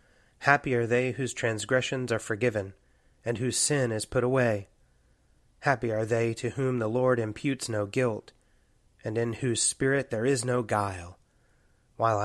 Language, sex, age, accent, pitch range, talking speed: English, male, 30-49, American, 105-125 Hz, 155 wpm